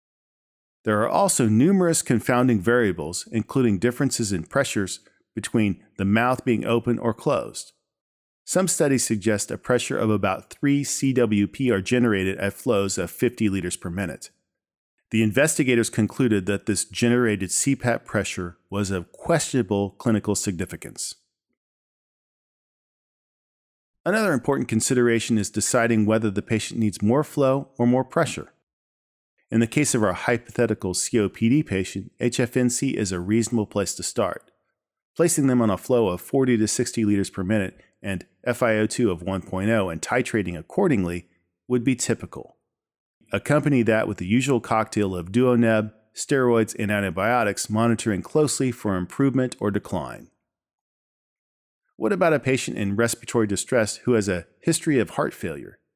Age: 40-59